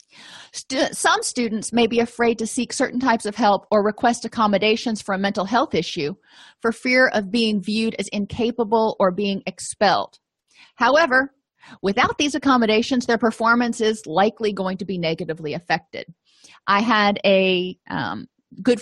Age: 30-49